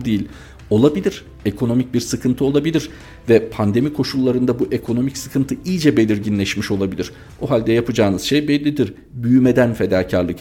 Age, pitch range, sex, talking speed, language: 50-69, 100-125 Hz, male, 125 wpm, Turkish